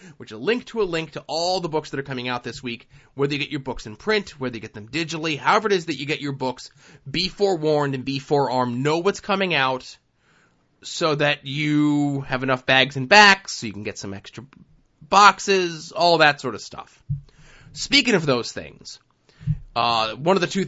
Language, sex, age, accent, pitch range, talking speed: English, male, 30-49, American, 130-160 Hz, 215 wpm